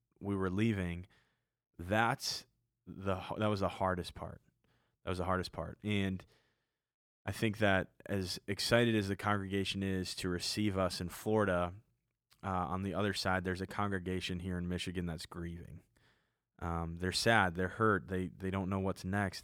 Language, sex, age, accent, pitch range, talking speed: English, male, 20-39, American, 90-105 Hz, 165 wpm